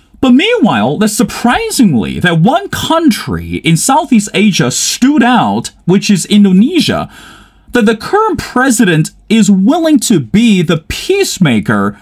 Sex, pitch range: male, 175-240 Hz